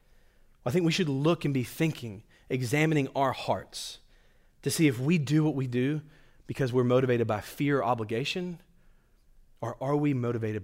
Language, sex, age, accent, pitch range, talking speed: English, male, 30-49, American, 115-145 Hz, 170 wpm